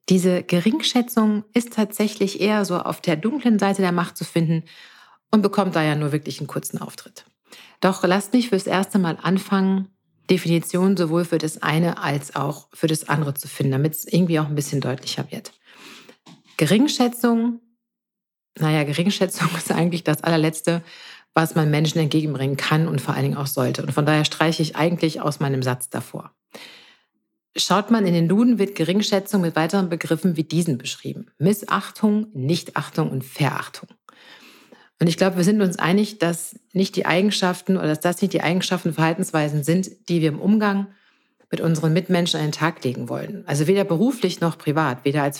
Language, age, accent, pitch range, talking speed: German, 50-69, German, 155-195 Hz, 175 wpm